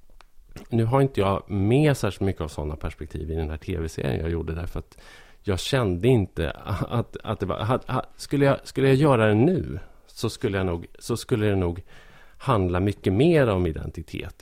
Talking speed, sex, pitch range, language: 170 wpm, male, 90-115 Hz, Swedish